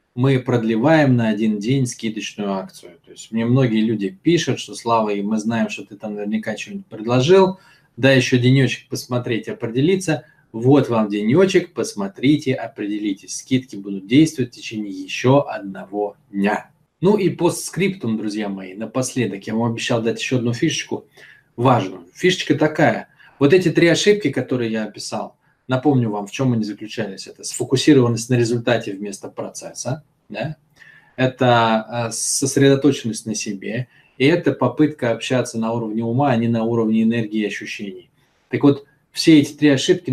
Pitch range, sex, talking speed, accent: 110-145 Hz, male, 155 wpm, native